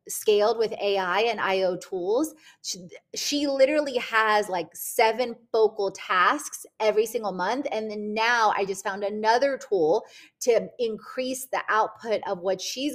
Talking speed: 150 wpm